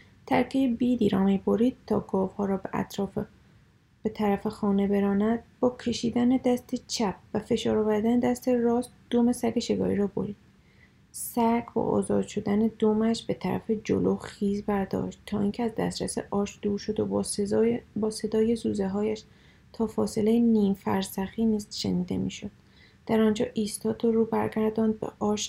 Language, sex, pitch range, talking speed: Persian, female, 205-225 Hz, 155 wpm